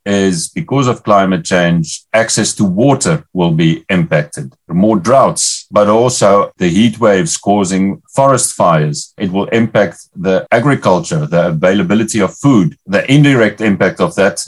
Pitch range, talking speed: 85-110 Hz, 145 wpm